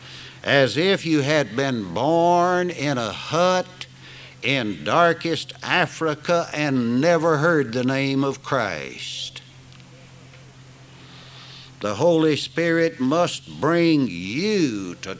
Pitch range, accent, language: 130-160 Hz, American, English